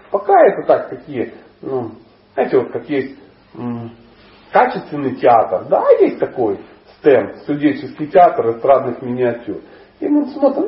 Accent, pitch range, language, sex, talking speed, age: native, 155-240 Hz, Russian, male, 130 wpm, 40-59